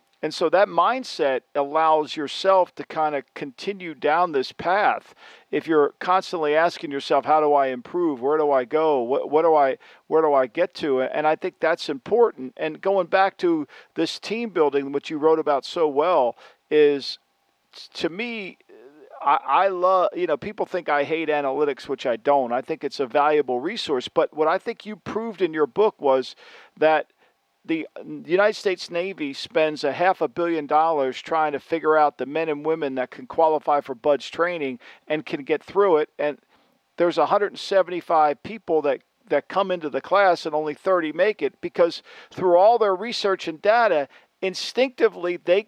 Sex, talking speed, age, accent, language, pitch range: male, 185 wpm, 50-69, American, English, 150-200 Hz